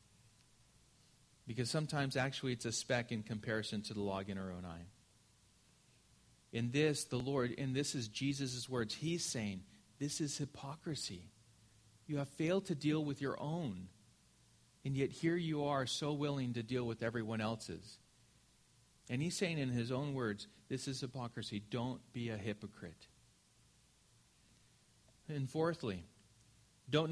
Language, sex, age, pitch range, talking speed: English, male, 40-59, 110-160 Hz, 145 wpm